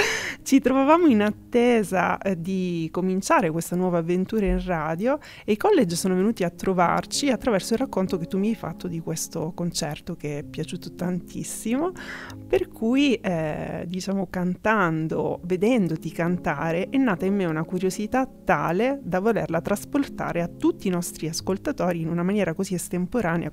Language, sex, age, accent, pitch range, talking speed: Italian, female, 30-49, native, 165-215 Hz, 155 wpm